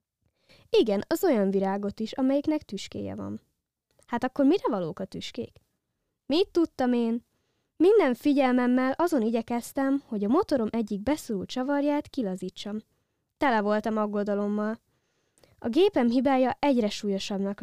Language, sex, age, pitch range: Hungarian, female, 20-39, 210-295 Hz